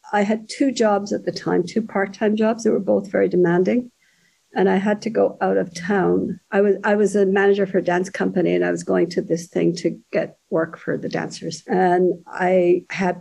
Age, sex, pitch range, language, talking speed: 50-69, female, 180-215 Hz, English, 225 wpm